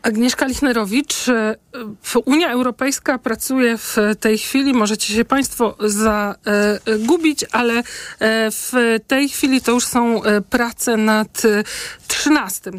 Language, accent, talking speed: Polish, native, 105 wpm